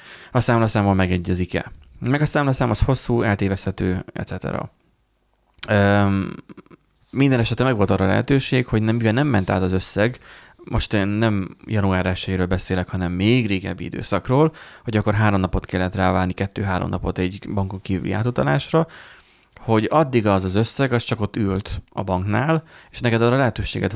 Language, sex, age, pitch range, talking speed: Hungarian, male, 30-49, 95-120 Hz, 155 wpm